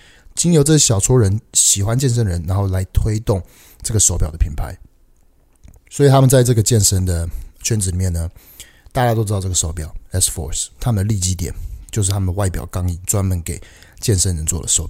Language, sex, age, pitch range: Chinese, male, 30-49, 85-115 Hz